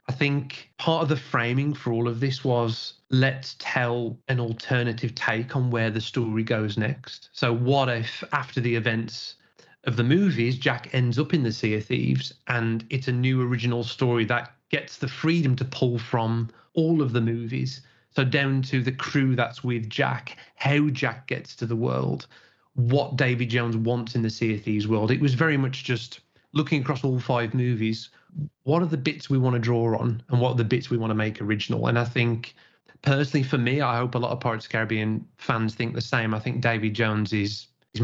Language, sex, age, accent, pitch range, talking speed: English, male, 30-49, British, 115-130 Hz, 210 wpm